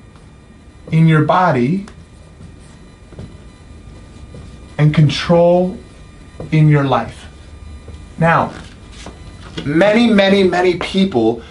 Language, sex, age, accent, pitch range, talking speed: English, male, 30-49, American, 130-185 Hz, 70 wpm